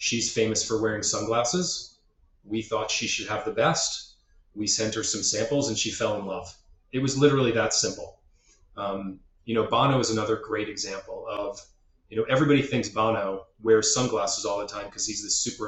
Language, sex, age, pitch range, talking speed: English, male, 30-49, 105-125 Hz, 190 wpm